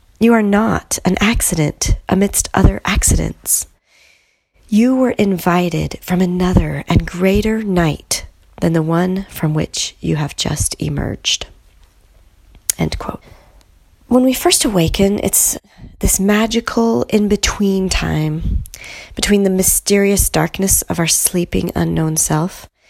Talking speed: 120 wpm